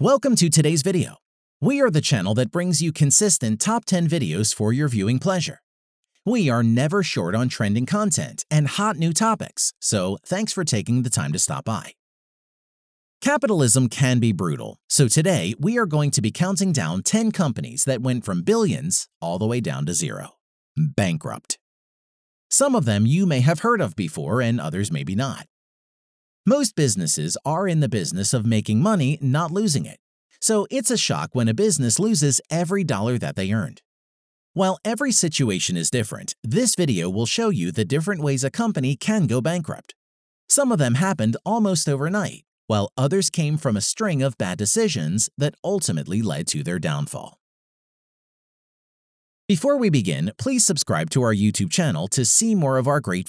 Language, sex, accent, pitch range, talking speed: English, male, American, 120-195 Hz, 175 wpm